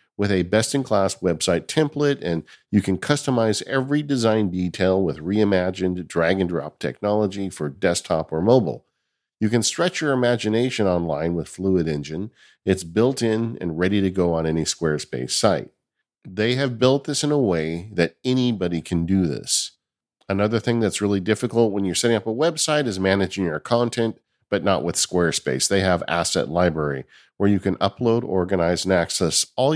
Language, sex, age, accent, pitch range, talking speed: English, male, 50-69, American, 90-120 Hz, 165 wpm